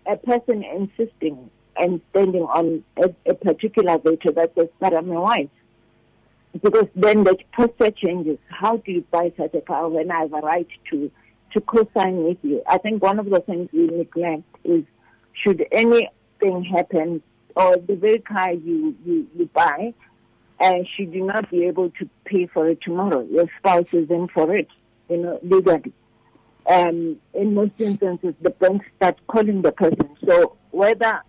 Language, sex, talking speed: English, female, 175 wpm